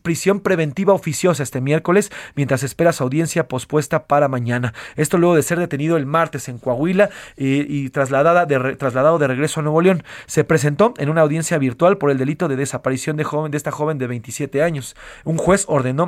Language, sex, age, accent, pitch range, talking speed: Spanish, male, 40-59, Mexican, 130-165 Hz, 200 wpm